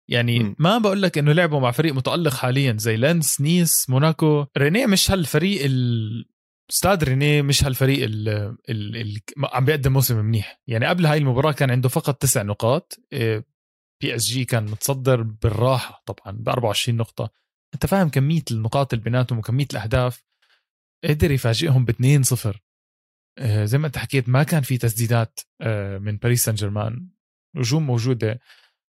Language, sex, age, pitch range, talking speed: Arabic, male, 20-39, 115-150 Hz, 155 wpm